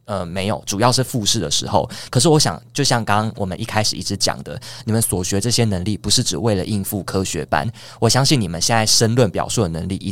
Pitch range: 95-120 Hz